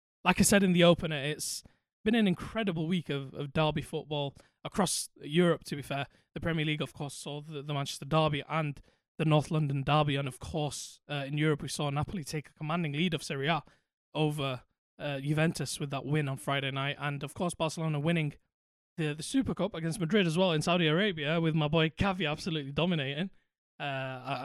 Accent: British